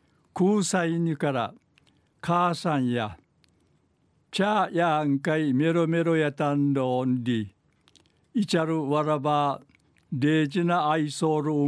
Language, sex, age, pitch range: Japanese, male, 60-79, 140-165 Hz